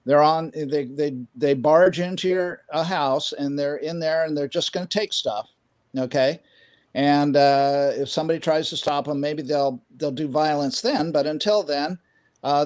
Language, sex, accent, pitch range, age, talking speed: English, male, American, 145-185 Hz, 50-69, 195 wpm